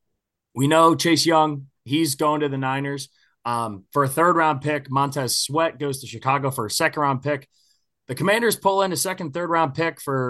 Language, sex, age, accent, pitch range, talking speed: English, male, 20-39, American, 120-150 Hz, 185 wpm